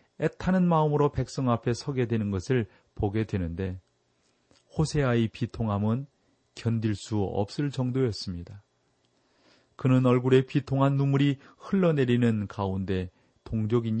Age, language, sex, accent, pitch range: 40-59, Korean, male, native, 105-135 Hz